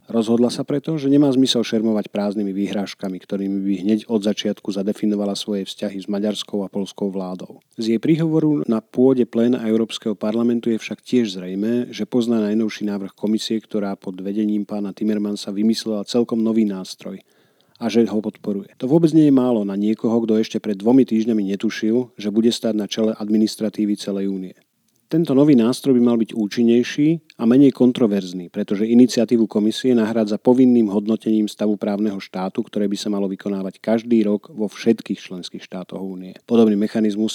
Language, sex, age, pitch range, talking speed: Slovak, male, 40-59, 100-120 Hz, 170 wpm